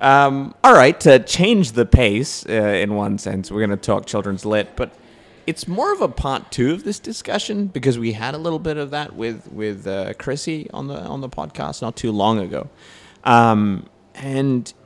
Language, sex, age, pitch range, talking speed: English, male, 30-49, 100-125 Hz, 205 wpm